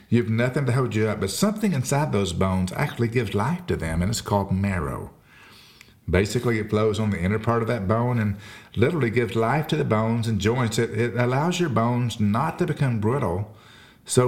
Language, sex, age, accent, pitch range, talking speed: English, male, 50-69, American, 100-125 Hz, 210 wpm